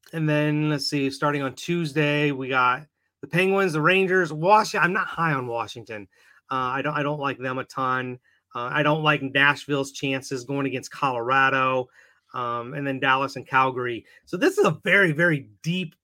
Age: 30-49